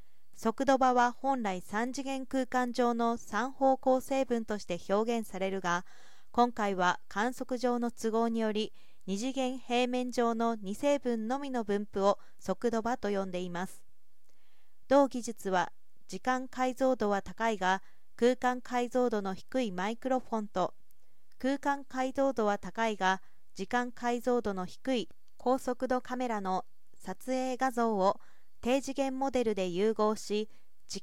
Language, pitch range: Japanese, 210-255 Hz